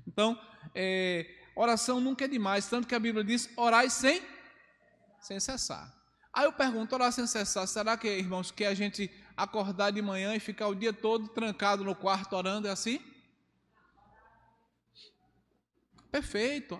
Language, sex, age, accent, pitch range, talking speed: Portuguese, male, 20-39, Brazilian, 200-250 Hz, 150 wpm